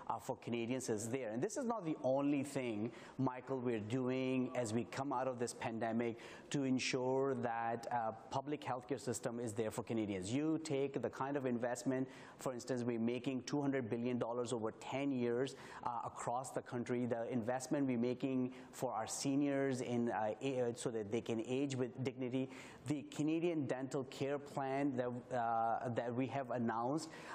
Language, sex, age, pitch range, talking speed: English, male, 30-49, 125-145 Hz, 180 wpm